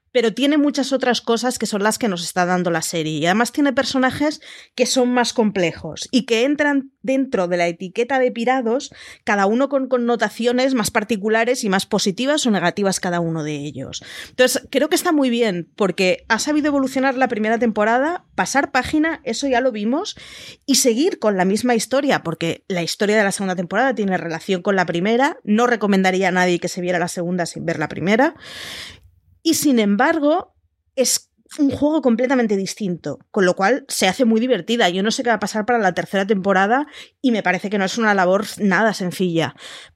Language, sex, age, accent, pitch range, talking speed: Spanish, female, 30-49, Spanish, 180-255 Hz, 200 wpm